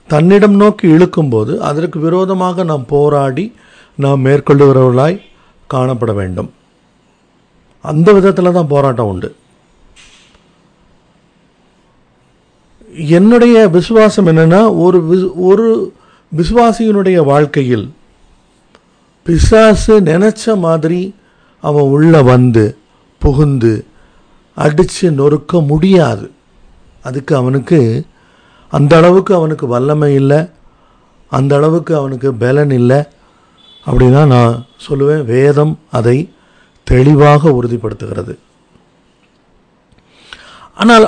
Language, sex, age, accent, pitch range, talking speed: Tamil, male, 50-69, native, 135-190 Hz, 80 wpm